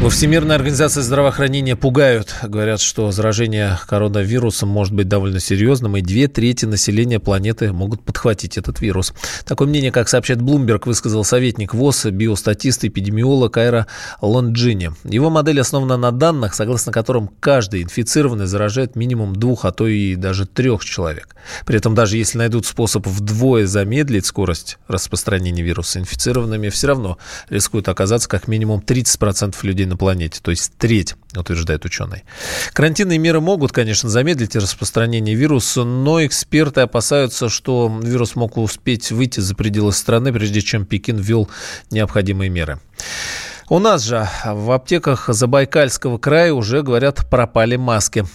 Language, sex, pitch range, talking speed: Russian, male, 100-130 Hz, 145 wpm